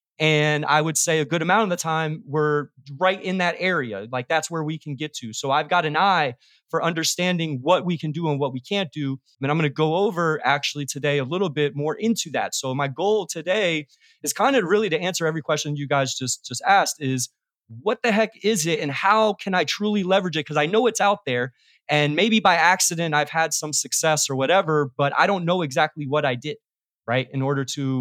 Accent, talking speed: American, 235 wpm